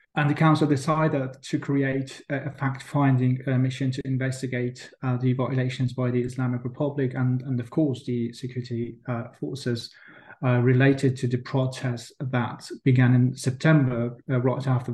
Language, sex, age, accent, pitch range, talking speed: English, male, 30-49, British, 125-145 Hz, 155 wpm